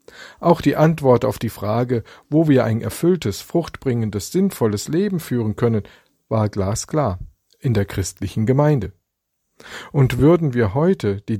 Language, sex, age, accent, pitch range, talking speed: German, male, 50-69, German, 110-140 Hz, 135 wpm